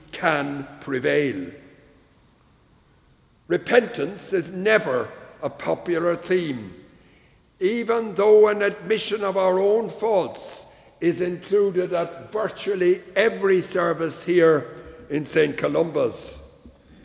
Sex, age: male, 60-79